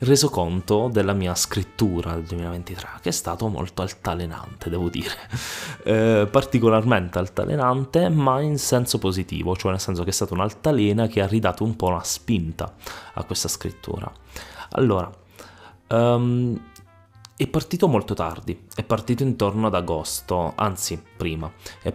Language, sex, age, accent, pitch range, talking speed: Italian, male, 20-39, native, 90-115 Hz, 140 wpm